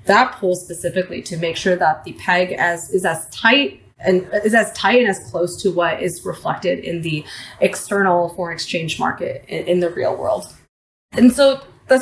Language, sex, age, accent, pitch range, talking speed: English, female, 20-39, American, 170-205 Hz, 190 wpm